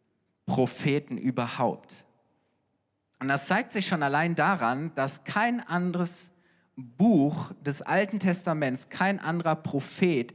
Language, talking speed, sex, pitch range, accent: German, 110 wpm, male, 150-190 Hz, German